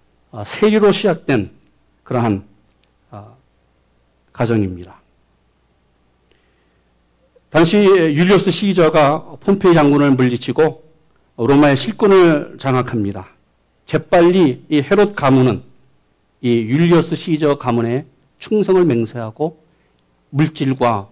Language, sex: Korean, male